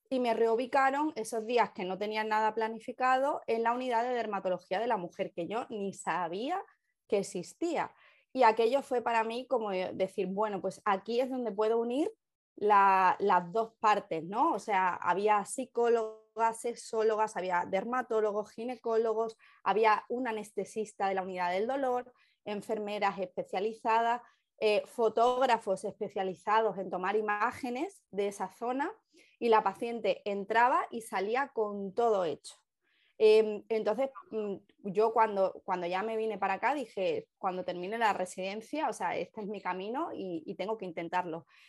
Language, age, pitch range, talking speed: Spanish, 20-39, 195-235 Hz, 150 wpm